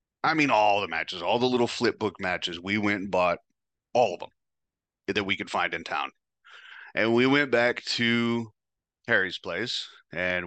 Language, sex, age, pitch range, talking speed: English, male, 30-49, 95-115 Hz, 185 wpm